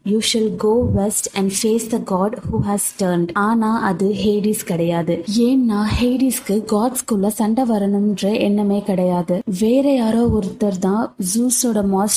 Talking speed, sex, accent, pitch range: 60 wpm, female, native, 195-235 Hz